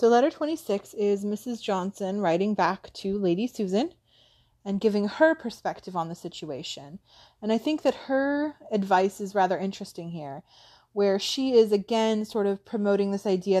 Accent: American